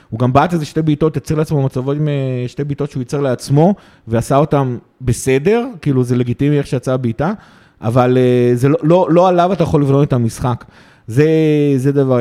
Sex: male